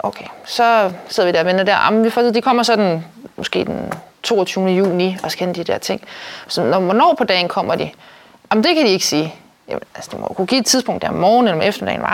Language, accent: Danish, native